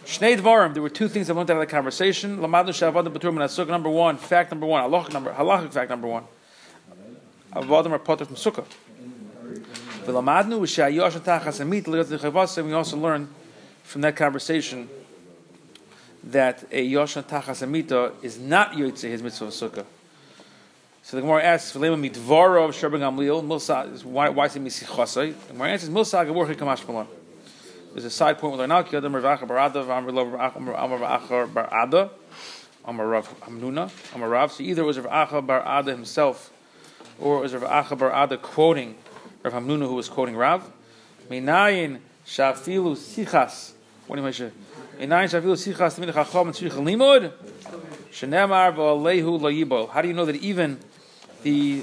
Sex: male